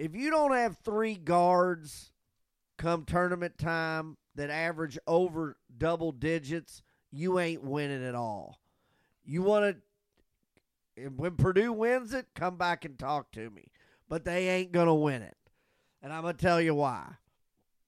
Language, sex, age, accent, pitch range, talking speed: English, male, 40-59, American, 135-185 Hz, 155 wpm